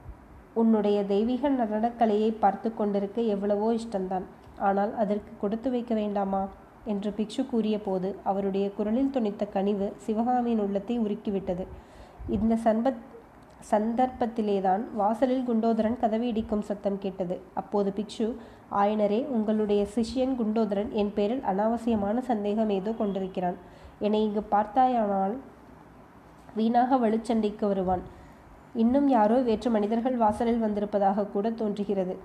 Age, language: 20-39, Tamil